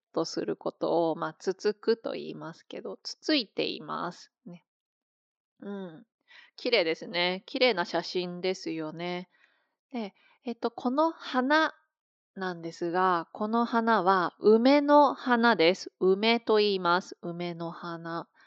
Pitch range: 175-240 Hz